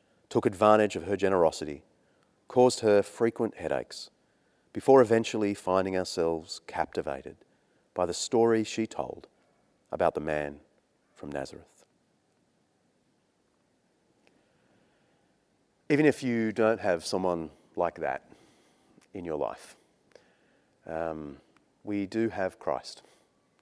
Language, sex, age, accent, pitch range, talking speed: English, male, 30-49, Australian, 90-115 Hz, 100 wpm